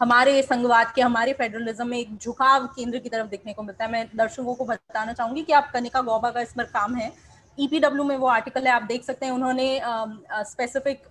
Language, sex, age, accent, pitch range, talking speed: Hindi, female, 20-39, native, 225-275 Hz, 210 wpm